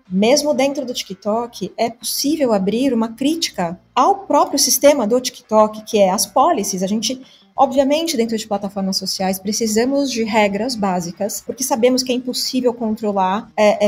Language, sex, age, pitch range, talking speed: Portuguese, female, 20-39, 205-255 Hz, 155 wpm